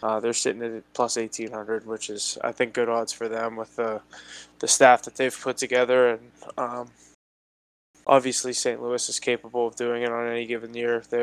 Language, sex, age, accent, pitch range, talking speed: English, male, 20-39, American, 115-125 Hz, 200 wpm